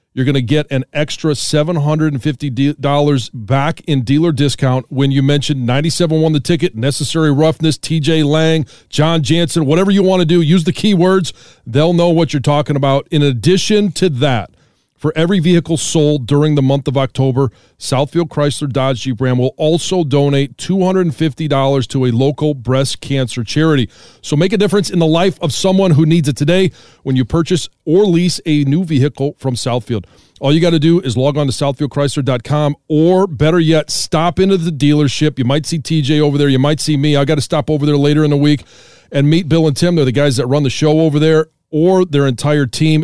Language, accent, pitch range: English, American, 135-155 Hz